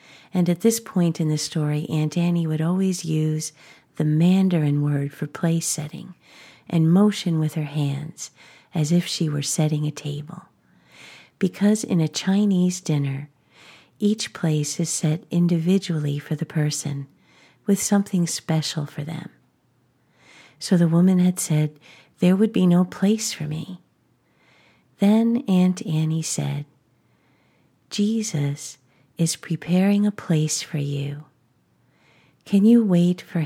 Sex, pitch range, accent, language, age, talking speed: female, 150-180 Hz, American, English, 50-69, 135 wpm